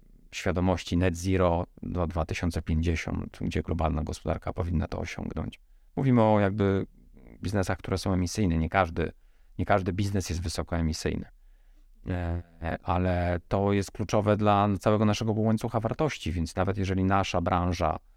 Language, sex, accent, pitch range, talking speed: Polish, male, native, 85-105 Hz, 130 wpm